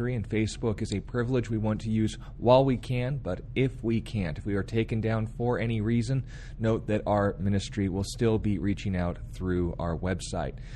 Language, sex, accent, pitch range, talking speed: English, male, American, 100-120 Hz, 200 wpm